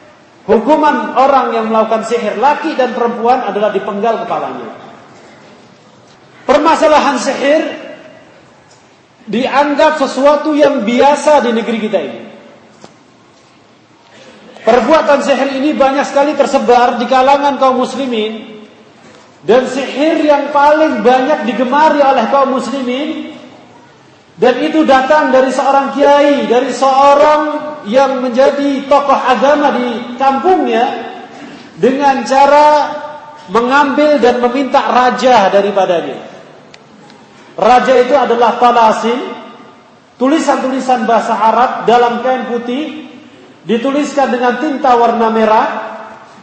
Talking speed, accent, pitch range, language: 100 wpm, native, 240-285 Hz, Indonesian